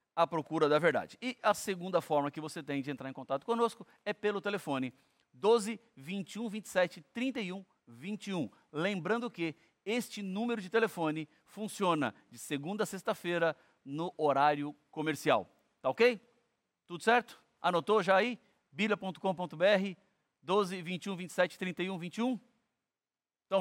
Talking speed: 110 wpm